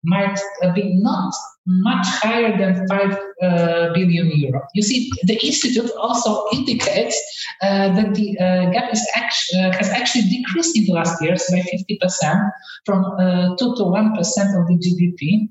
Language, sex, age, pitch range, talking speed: Polish, male, 50-69, 175-220 Hz, 165 wpm